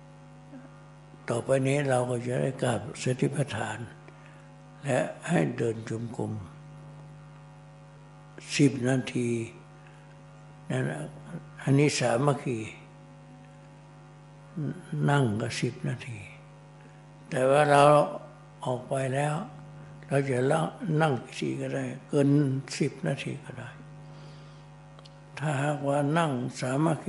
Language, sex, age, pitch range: Thai, male, 60-79, 130-150 Hz